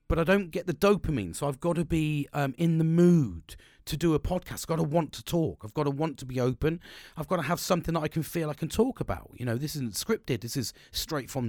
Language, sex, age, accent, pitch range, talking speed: English, male, 40-59, British, 120-185 Hz, 275 wpm